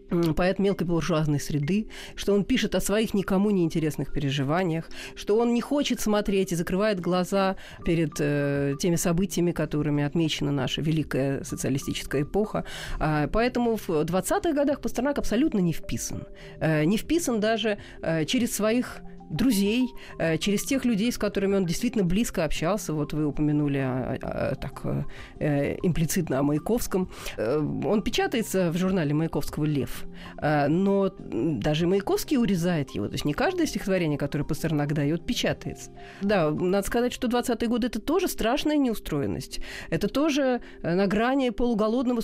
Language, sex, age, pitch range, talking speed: Russian, female, 40-59, 155-220 Hz, 140 wpm